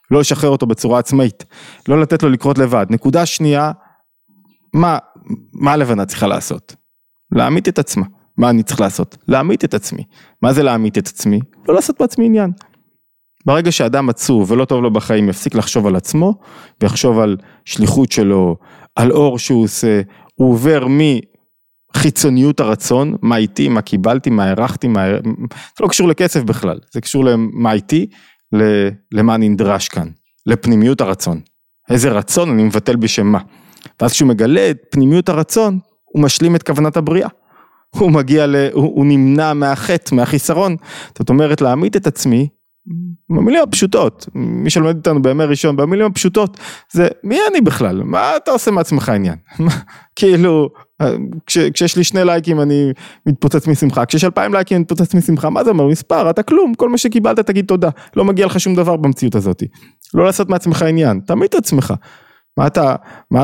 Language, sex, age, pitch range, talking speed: Hebrew, male, 20-39, 120-175 Hz, 160 wpm